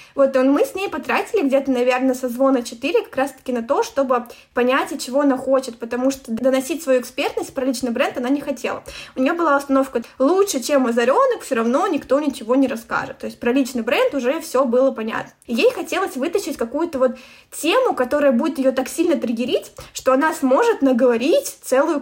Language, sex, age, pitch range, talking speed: Russian, female, 20-39, 250-280 Hz, 195 wpm